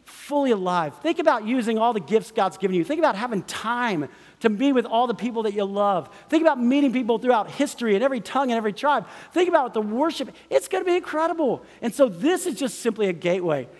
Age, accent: 50-69, American